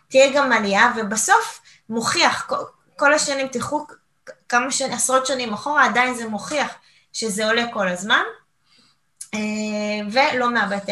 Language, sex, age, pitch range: Hebrew, female, 20-39, 195-240 Hz